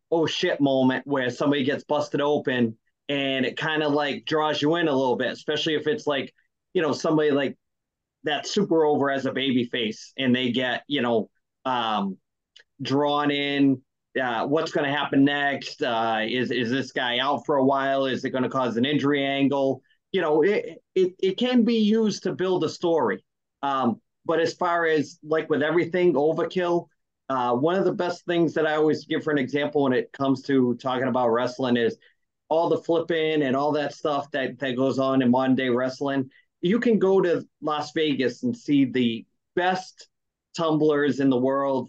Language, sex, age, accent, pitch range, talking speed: English, male, 30-49, American, 130-165 Hz, 195 wpm